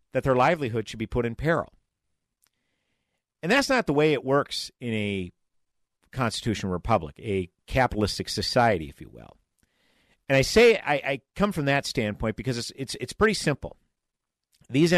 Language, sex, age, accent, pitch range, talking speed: English, male, 50-69, American, 95-125 Hz, 165 wpm